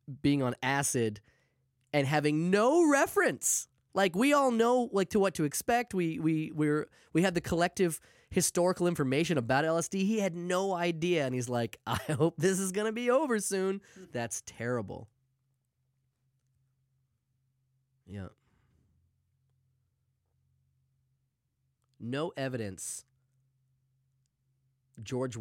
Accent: American